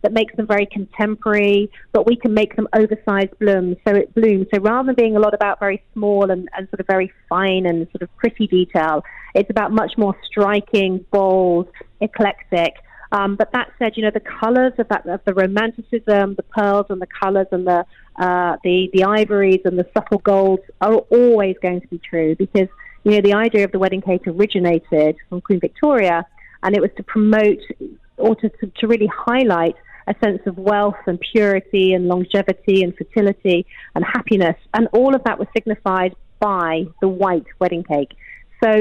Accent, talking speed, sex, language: British, 190 wpm, female, English